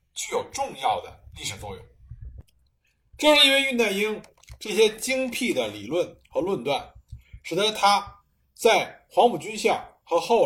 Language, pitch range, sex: Chinese, 180-275 Hz, male